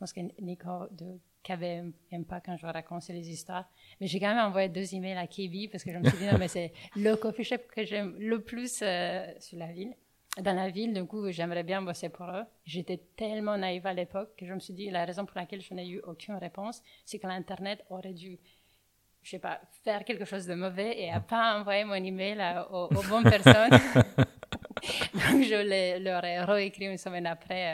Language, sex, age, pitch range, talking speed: French, female, 30-49, 175-215 Hz, 230 wpm